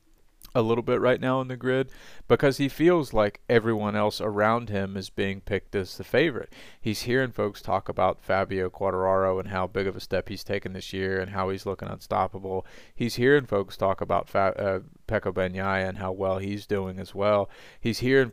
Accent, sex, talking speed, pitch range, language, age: American, male, 205 wpm, 95-115 Hz, English, 30-49